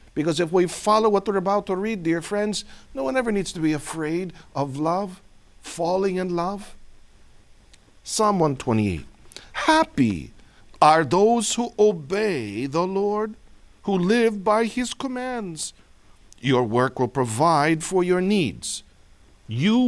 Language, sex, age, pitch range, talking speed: Filipino, male, 50-69, 125-200 Hz, 135 wpm